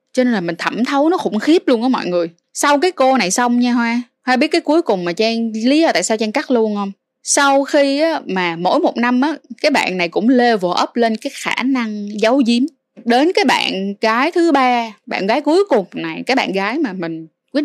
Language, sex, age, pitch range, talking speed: Vietnamese, female, 20-39, 200-270 Hz, 245 wpm